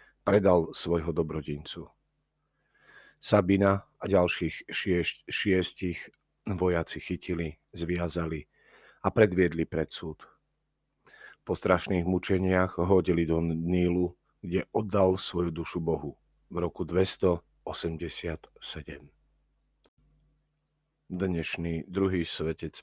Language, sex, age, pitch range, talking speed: Slovak, male, 40-59, 80-95 Hz, 85 wpm